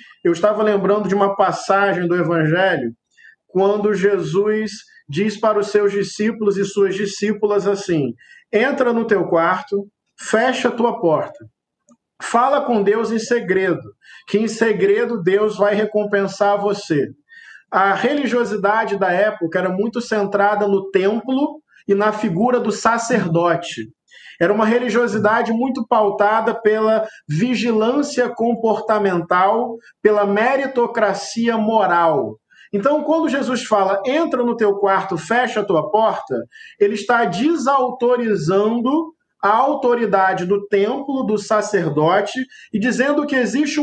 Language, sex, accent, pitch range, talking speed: Portuguese, male, Brazilian, 200-245 Hz, 120 wpm